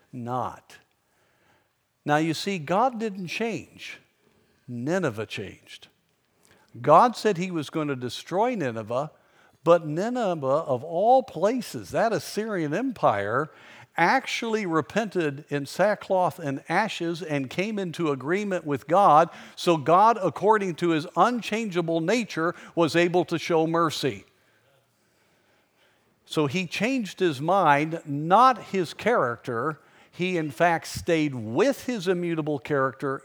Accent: American